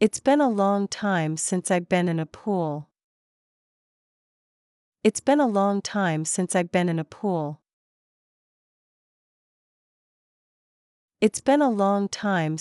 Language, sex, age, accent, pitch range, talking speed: English, female, 40-59, American, 165-230 Hz, 130 wpm